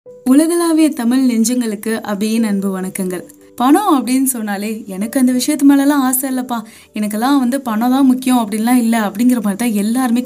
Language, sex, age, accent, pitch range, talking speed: Tamil, female, 20-39, native, 200-255 Hz, 150 wpm